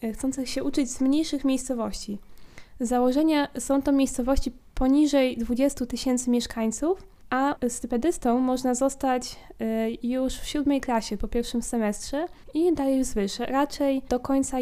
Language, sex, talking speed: Polish, female, 135 wpm